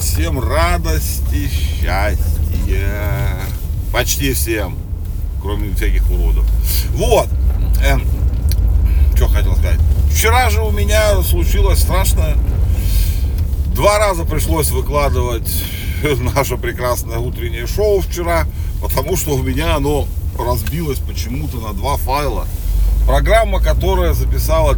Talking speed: 95 wpm